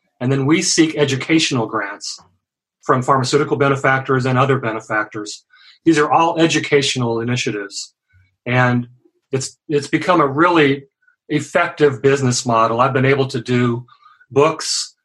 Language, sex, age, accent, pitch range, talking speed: English, male, 40-59, American, 120-150 Hz, 130 wpm